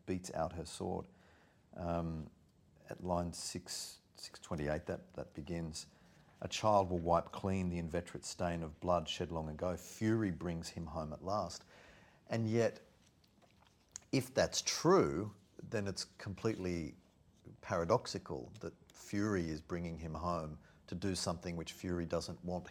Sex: male